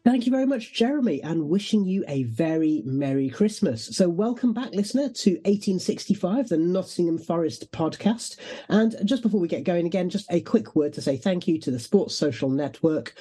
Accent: British